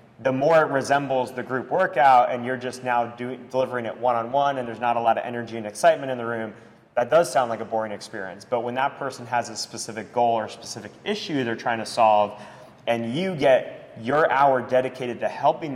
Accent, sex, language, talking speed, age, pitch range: American, male, English, 220 wpm, 30-49, 115-130 Hz